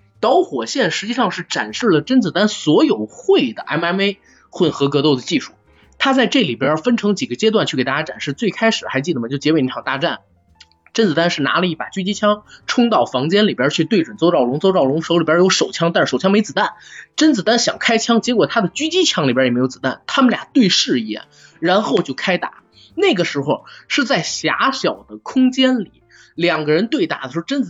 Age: 20-39